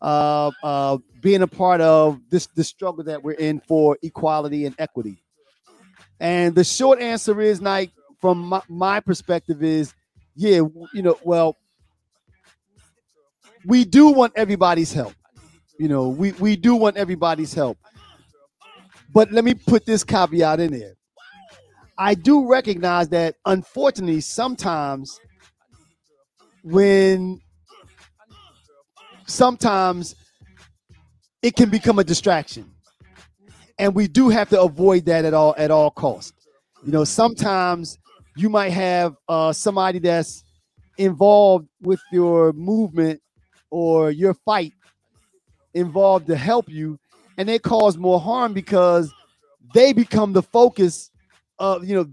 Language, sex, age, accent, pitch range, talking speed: English, male, 40-59, American, 155-205 Hz, 130 wpm